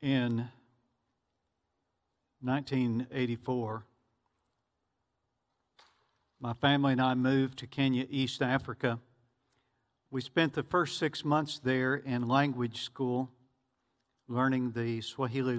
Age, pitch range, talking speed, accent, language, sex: 50-69, 120-140 Hz, 90 wpm, American, English, male